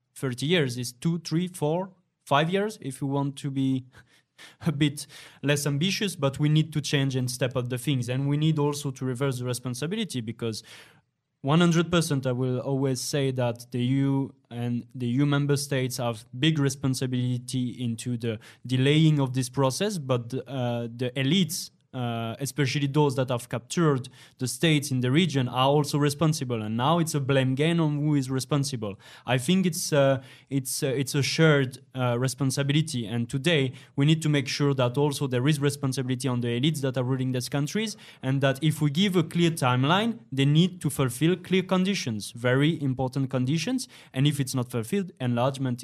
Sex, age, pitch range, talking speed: male, 20-39, 125-150 Hz, 180 wpm